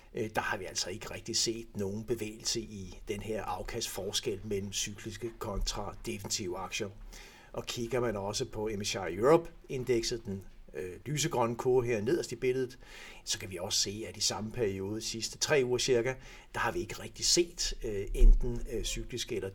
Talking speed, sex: 165 wpm, male